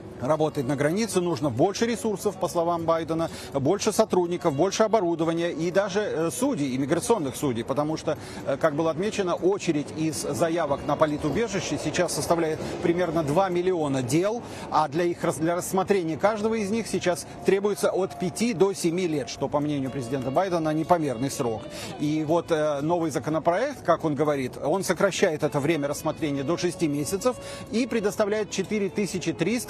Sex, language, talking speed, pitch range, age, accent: male, Russian, 150 wpm, 150-190 Hz, 30-49, native